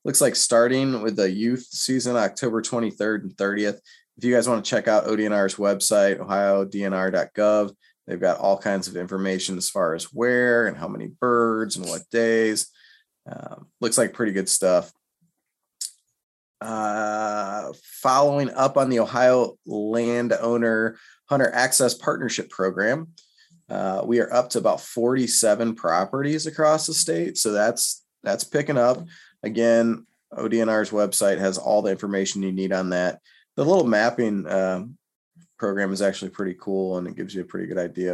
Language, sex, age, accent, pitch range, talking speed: English, male, 20-39, American, 95-120 Hz, 155 wpm